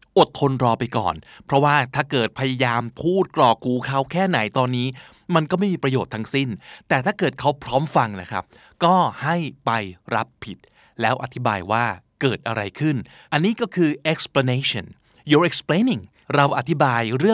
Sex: male